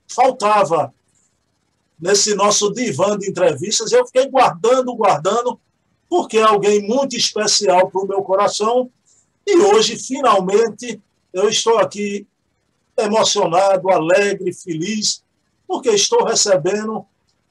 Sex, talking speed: male, 105 wpm